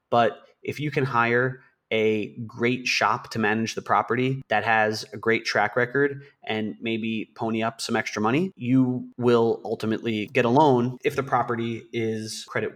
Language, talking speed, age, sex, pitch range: English, 170 wpm, 30-49, male, 110-130 Hz